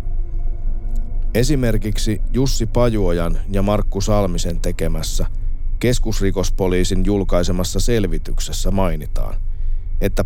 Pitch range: 90-100 Hz